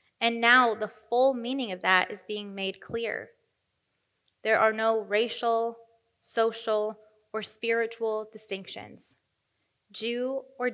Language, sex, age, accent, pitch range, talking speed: English, female, 20-39, American, 195-230 Hz, 115 wpm